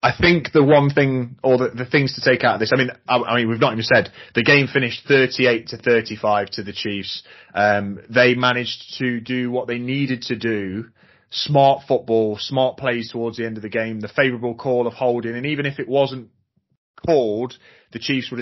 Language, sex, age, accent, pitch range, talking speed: English, male, 30-49, British, 110-130 Hz, 215 wpm